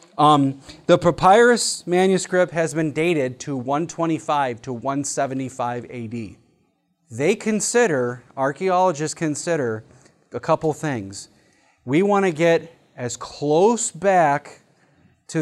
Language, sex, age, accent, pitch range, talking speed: English, male, 30-49, American, 135-175 Hz, 105 wpm